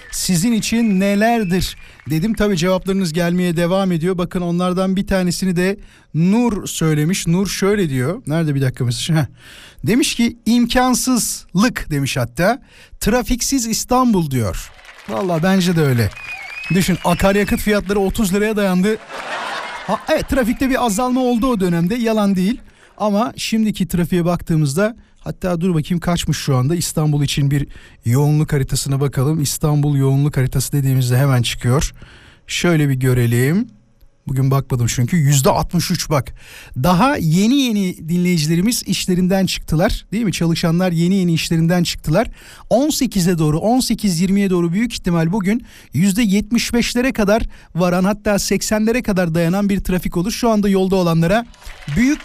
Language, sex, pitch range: Turkish, male, 155-215 Hz